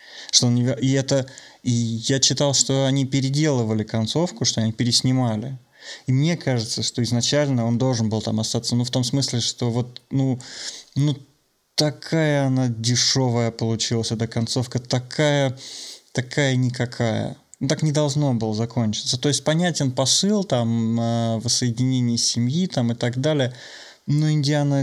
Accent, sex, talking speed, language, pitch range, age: native, male, 145 wpm, Russian, 120-140 Hz, 20-39